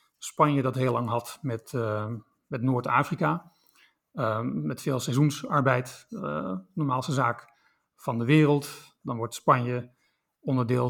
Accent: Dutch